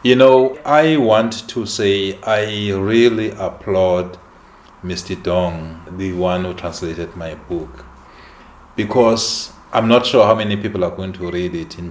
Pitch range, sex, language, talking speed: 90-110 Hz, male, English, 150 wpm